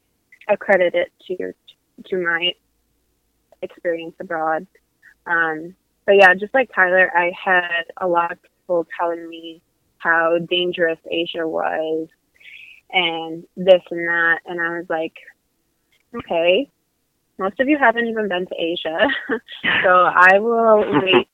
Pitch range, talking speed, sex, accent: 170-190 Hz, 130 wpm, female, American